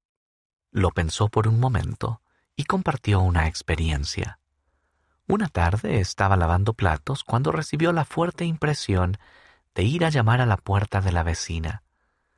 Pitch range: 80-130 Hz